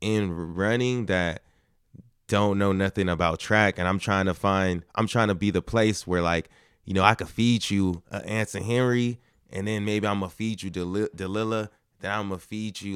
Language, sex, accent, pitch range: English, male, American, 95-110 Hz